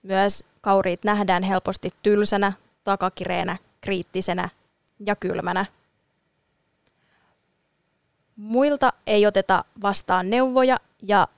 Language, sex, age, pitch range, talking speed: Finnish, female, 20-39, 195-225 Hz, 80 wpm